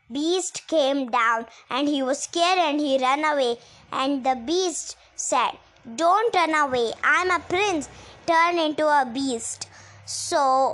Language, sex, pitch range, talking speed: English, male, 260-330 Hz, 145 wpm